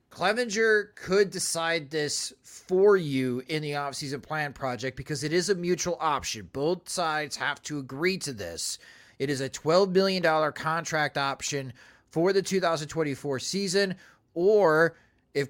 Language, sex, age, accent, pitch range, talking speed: English, male, 30-49, American, 135-165 Hz, 145 wpm